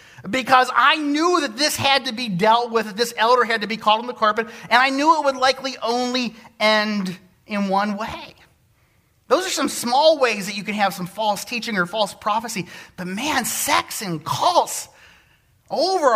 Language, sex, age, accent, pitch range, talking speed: English, male, 30-49, American, 210-280 Hz, 195 wpm